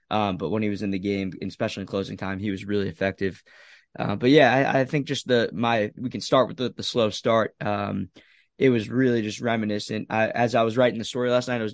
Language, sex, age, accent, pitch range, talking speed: English, male, 20-39, American, 105-125 Hz, 250 wpm